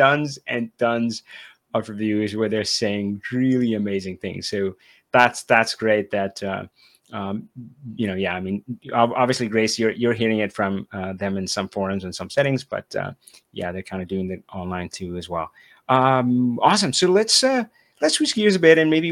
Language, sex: English, male